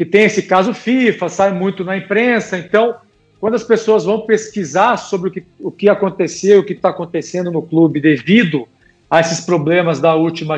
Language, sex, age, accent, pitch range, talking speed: Portuguese, male, 50-69, Brazilian, 175-225 Hz, 185 wpm